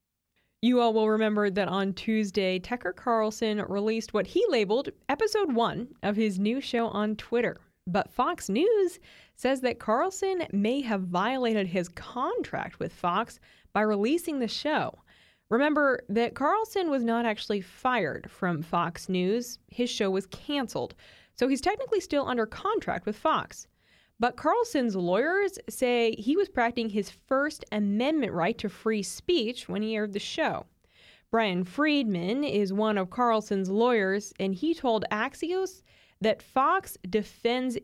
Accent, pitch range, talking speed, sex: American, 205-275 Hz, 150 wpm, female